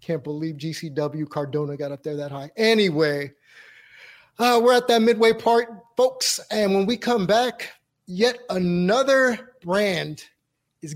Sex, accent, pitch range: male, American, 165-210 Hz